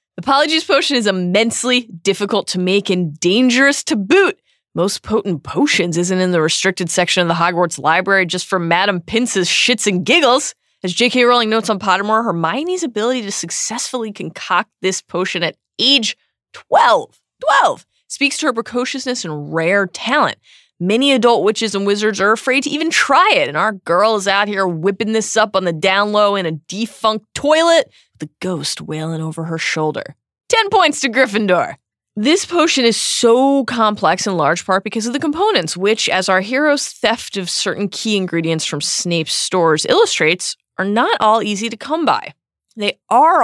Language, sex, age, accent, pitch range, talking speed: English, female, 20-39, American, 180-245 Hz, 175 wpm